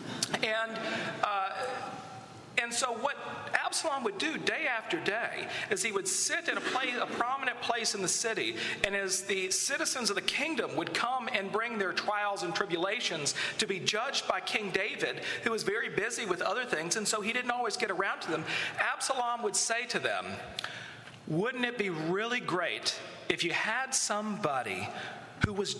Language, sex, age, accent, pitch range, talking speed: English, male, 40-59, American, 195-245 Hz, 185 wpm